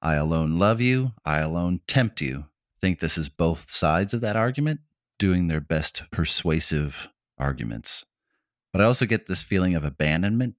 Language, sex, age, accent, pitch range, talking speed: English, male, 30-49, American, 75-100 Hz, 165 wpm